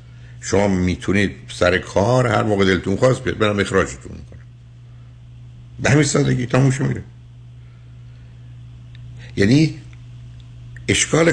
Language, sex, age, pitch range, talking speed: Persian, male, 60-79, 85-120 Hz, 95 wpm